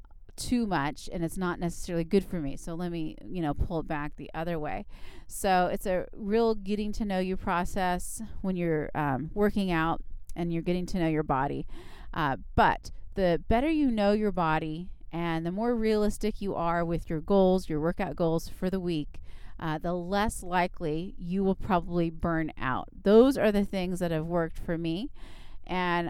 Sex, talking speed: female, 190 wpm